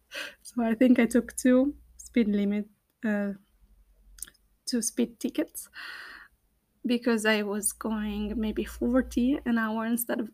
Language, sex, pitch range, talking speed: Italian, female, 210-250 Hz, 130 wpm